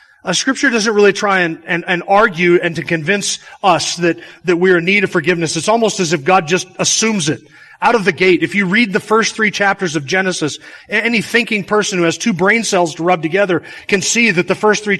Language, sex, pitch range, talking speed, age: English, male, 170-220 Hz, 235 wpm, 30-49